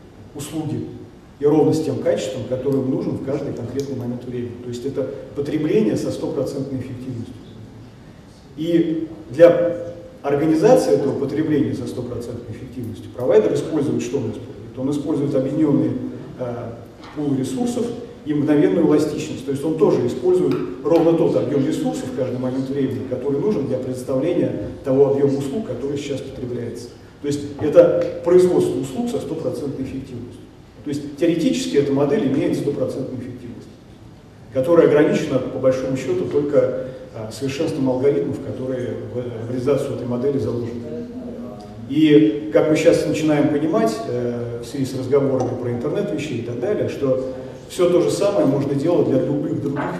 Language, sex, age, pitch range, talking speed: Russian, male, 40-59, 125-150 Hz, 150 wpm